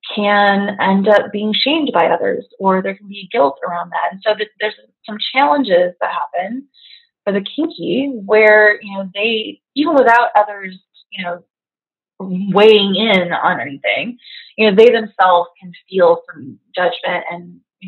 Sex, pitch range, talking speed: female, 185-235 Hz, 160 wpm